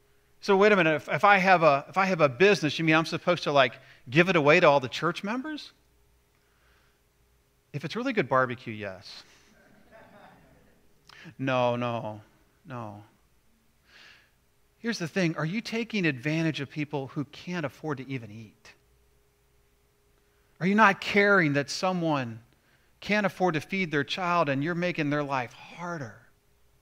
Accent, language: American, English